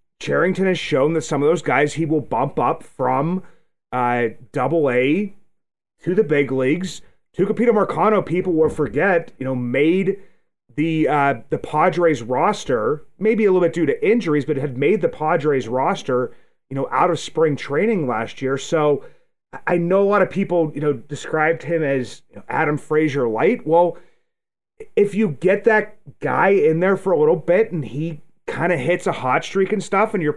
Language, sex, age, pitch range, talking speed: English, male, 30-49, 145-195 Hz, 185 wpm